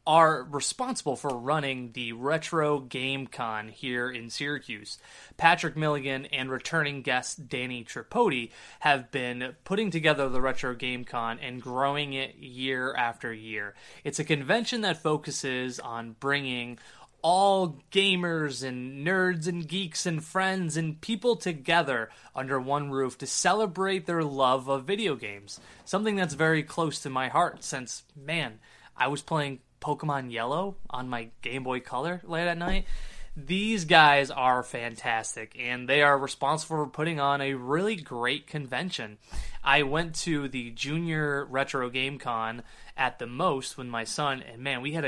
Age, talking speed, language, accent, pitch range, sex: 20-39, 155 wpm, English, American, 125-160 Hz, male